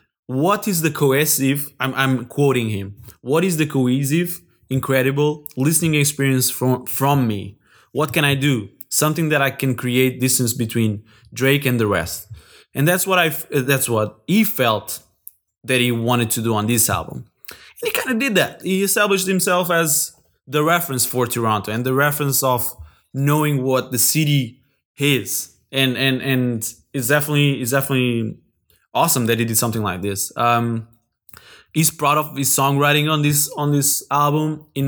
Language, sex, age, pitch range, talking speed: English, male, 20-39, 120-155 Hz, 170 wpm